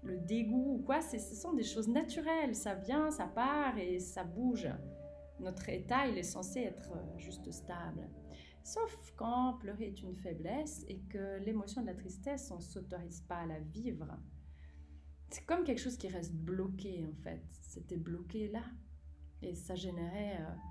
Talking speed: 170 wpm